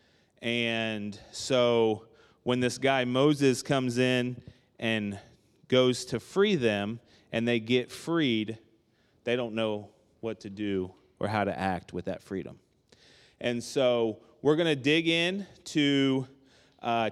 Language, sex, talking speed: English, male, 135 wpm